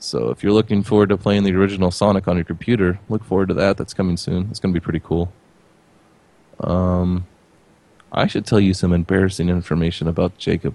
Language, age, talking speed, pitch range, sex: English, 20-39, 200 wpm, 95-120 Hz, male